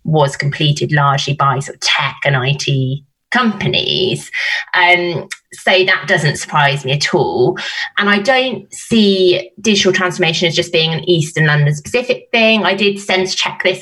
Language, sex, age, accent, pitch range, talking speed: English, female, 20-39, British, 150-195 Hz, 165 wpm